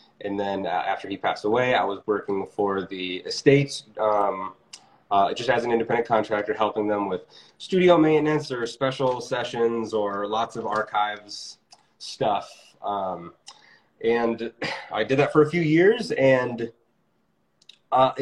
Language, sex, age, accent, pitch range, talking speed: English, male, 20-39, American, 105-135 Hz, 145 wpm